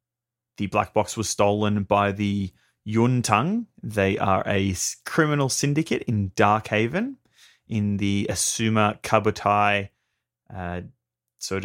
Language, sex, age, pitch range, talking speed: English, male, 30-49, 105-125 Hz, 110 wpm